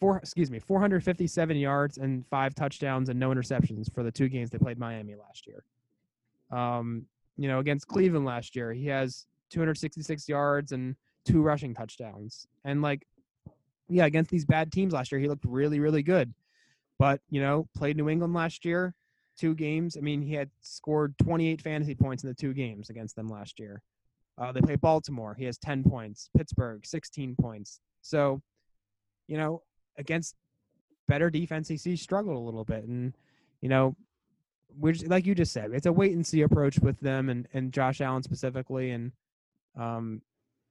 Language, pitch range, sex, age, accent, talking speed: English, 120-155 Hz, male, 20-39, American, 175 wpm